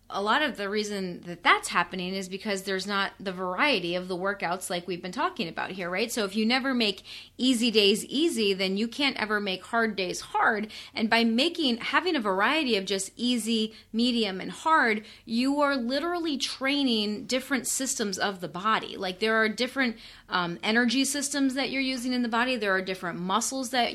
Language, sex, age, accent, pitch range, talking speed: English, female, 30-49, American, 200-250 Hz, 200 wpm